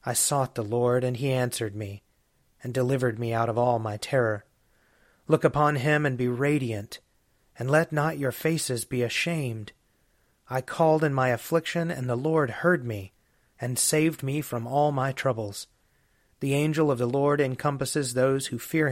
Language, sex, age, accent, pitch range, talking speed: English, male, 40-59, American, 120-145 Hz, 175 wpm